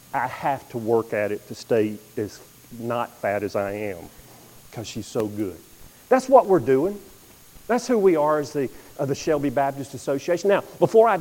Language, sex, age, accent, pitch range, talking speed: English, male, 40-59, American, 120-175 Hz, 195 wpm